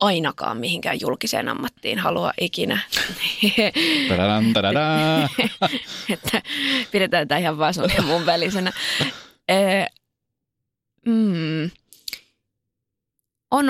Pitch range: 165-195 Hz